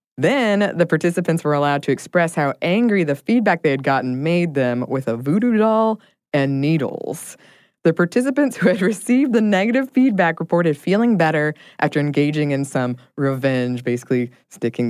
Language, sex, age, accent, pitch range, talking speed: English, female, 20-39, American, 125-175 Hz, 160 wpm